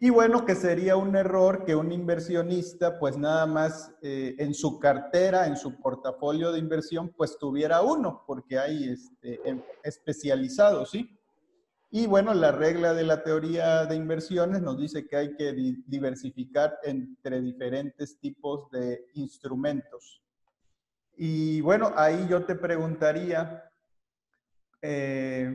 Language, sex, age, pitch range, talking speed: Spanish, male, 40-59, 140-170 Hz, 135 wpm